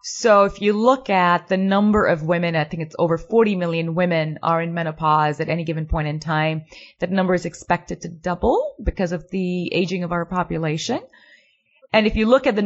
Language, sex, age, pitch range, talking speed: English, female, 30-49, 160-185 Hz, 210 wpm